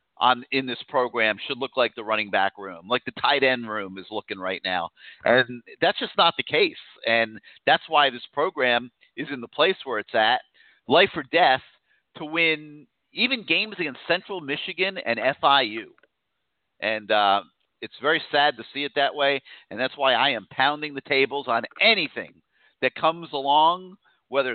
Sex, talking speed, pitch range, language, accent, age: male, 180 wpm, 125-165 Hz, English, American, 50-69